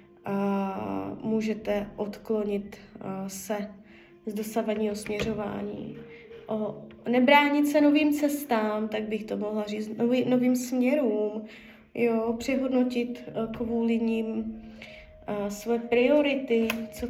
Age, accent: 20-39, native